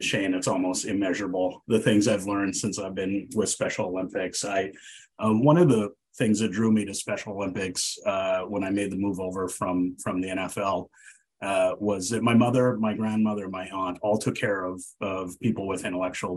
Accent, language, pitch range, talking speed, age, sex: American, English, 95-115 Hz, 200 wpm, 30-49, male